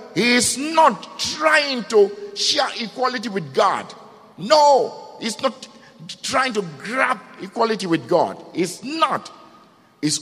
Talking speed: 125 wpm